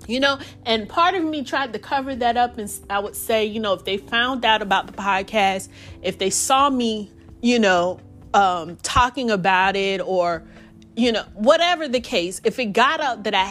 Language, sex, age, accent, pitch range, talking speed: English, female, 30-49, American, 195-270 Hz, 205 wpm